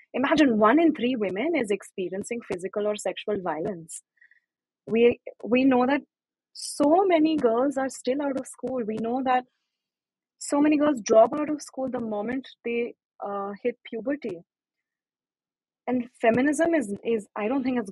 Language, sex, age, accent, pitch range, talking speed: English, female, 20-39, Indian, 190-245 Hz, 155 wpm